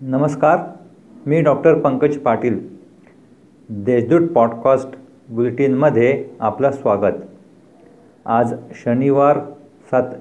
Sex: male